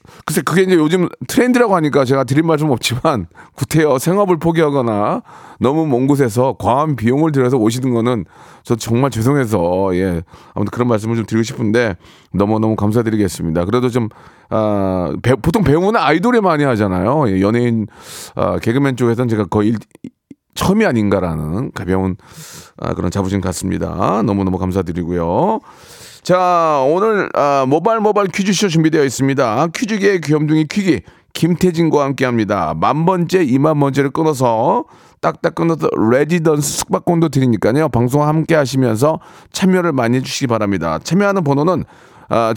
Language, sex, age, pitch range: Korean, male, 30-49, 110-160 Hz